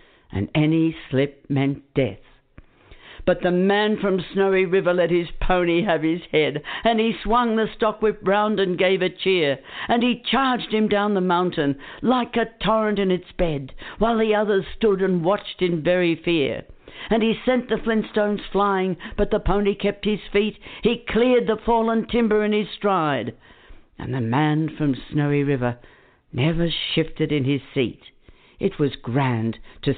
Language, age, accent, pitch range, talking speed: English, 60-79, British, 140-210 Hz, 170 wpm